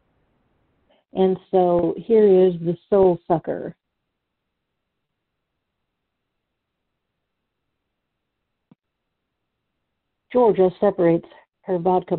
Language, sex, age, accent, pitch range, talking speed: English, female, 50-69, American, 165-195 Hz, 55 wpm